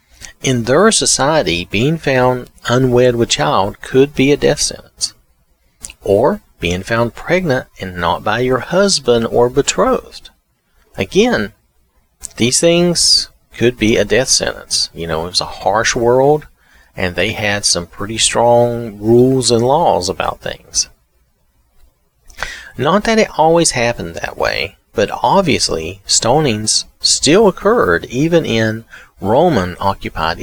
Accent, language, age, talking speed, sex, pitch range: American, English, 40-59, 130 wpm, male, 95-130 Hz